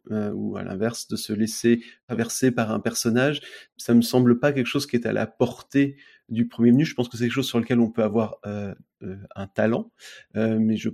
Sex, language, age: male, French, 30-49